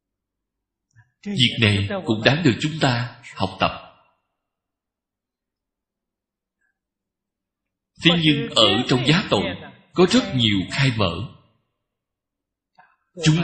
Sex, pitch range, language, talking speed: male, 100-135 Hz, Vietnamese, 95 wpm